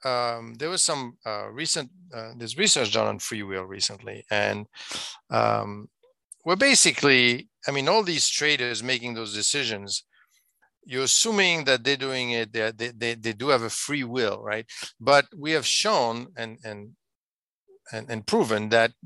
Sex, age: male, 50-69